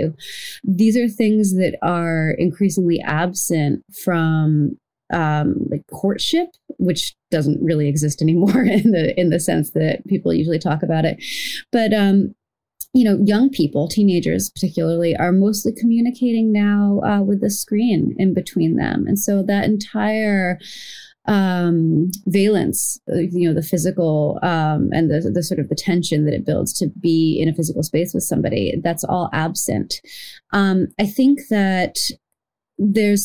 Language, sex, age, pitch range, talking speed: English, female, 30-49, 165-205 Hz, 150 wpm